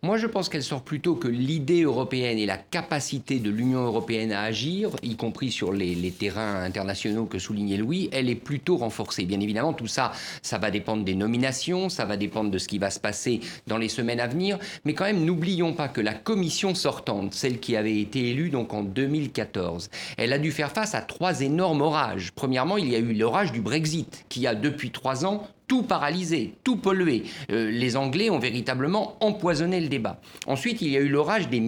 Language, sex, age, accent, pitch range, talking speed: French, male, 50-69, French, 115-165 Hz, 210 wpm